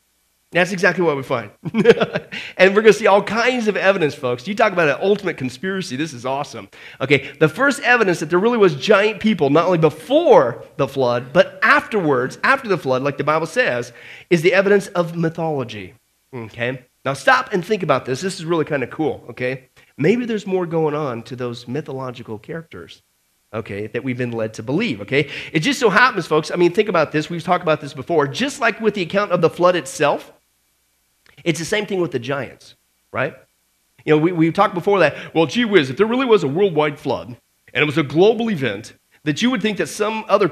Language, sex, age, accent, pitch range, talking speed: English, male, 40-59, American, 135-205 Hz, 215 wpm